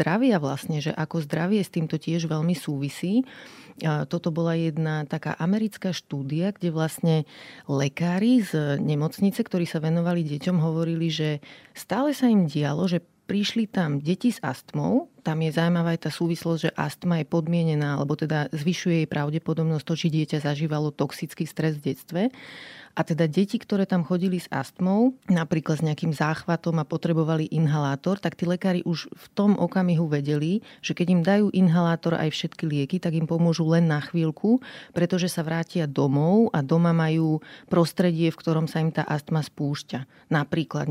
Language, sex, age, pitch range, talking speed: Slovak, female, 30-49, 150-175 Hz, 165 wpm